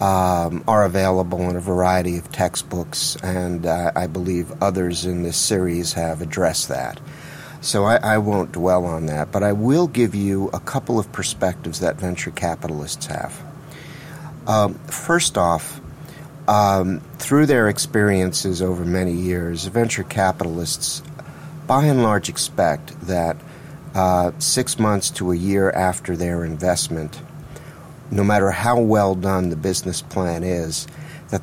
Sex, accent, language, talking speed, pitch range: male, American, English, 145 wpm, 90-110 Hz